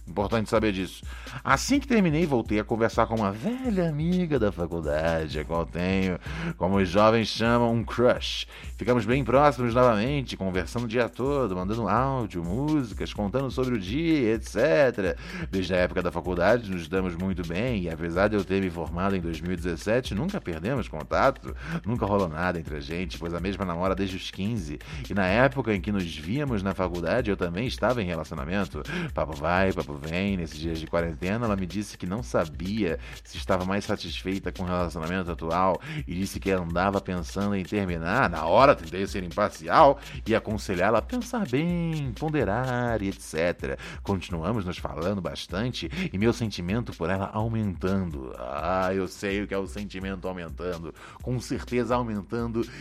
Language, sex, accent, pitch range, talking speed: Portuguese, male, Brazilian, 90-115 Hz, 175 wpm